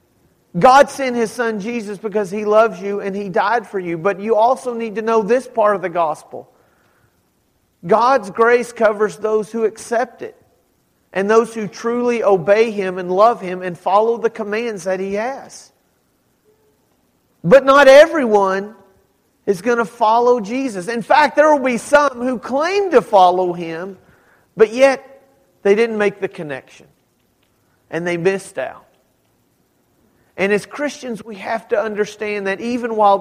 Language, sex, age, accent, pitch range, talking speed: English, male, 40-59, American, 180-230 Hz, 160 wpm